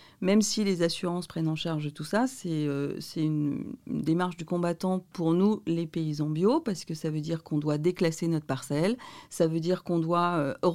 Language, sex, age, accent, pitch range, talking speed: French, female, 40-59, French, 165-200 Hz, 210 wpm